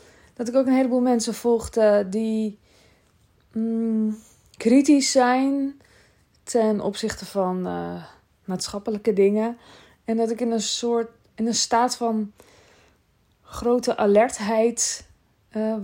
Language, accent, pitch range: Dutch, Dutch, 200-235 Hz